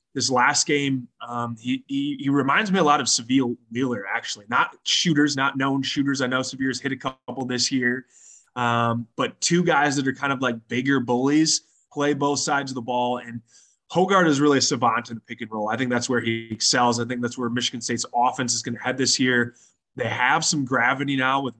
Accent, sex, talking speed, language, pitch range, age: American, male, 225 wpm, English, 125-145 Hz, 20-39